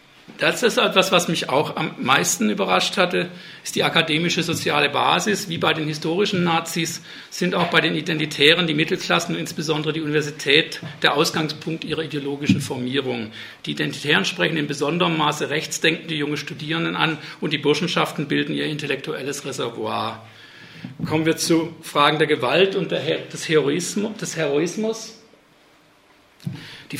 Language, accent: German, German